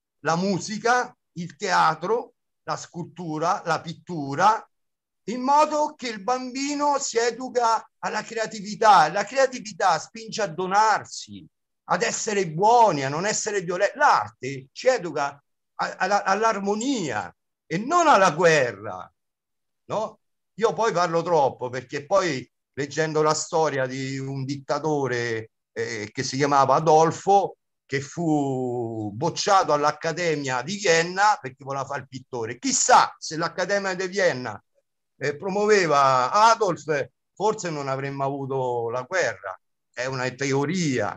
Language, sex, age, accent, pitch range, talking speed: Italian, male, 50-69, native, 140-210 Hz, 120 wpm